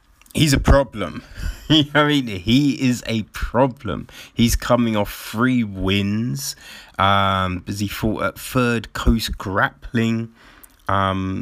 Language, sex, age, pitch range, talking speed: English, male, 30-49, 95-120 Hz, 135 wpm